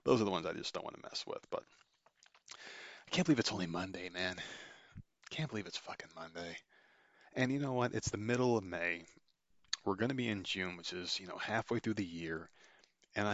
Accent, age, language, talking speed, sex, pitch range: American, 30-49, English, 215 wpm, male, 90-115 Hz